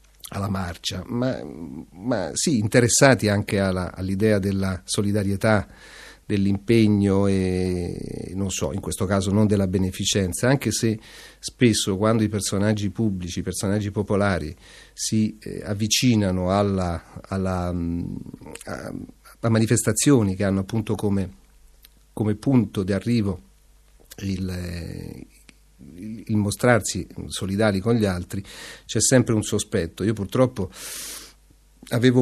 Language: Italian